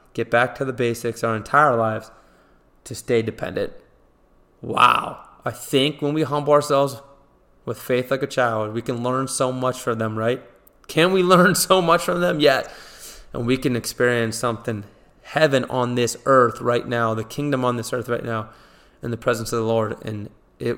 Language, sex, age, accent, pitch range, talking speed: English, male, 20-39, American, 115-130 Hz, 190 wpm